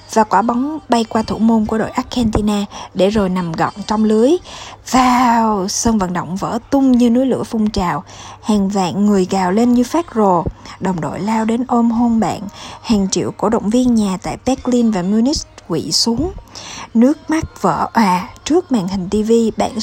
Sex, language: female, Vietnamese